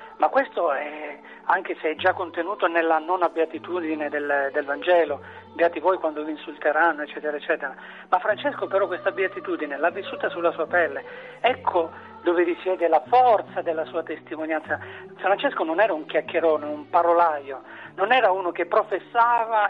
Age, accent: 40-59, native